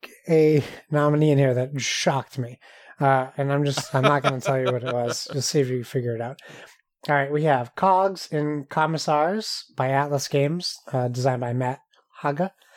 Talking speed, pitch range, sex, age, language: 195 wpm, 135-165 Hz, male, 30-49, English